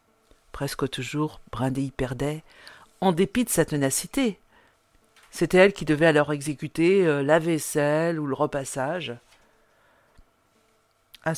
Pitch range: 145-195 Hz